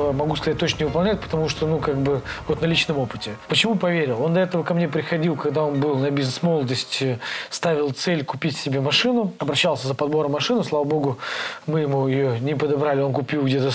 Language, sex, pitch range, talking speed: Russian, male, 135-170 Hz, 200 wpm